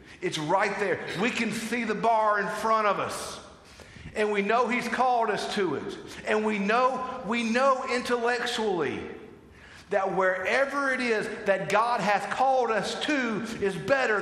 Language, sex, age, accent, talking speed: English, male, 50-69, American, 160 wpm